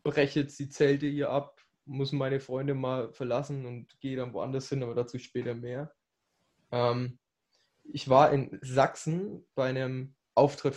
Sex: male